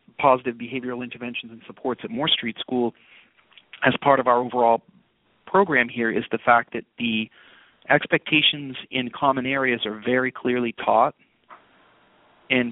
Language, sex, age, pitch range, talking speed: English, male, 40-59, 120-140 Hz, 140 wpm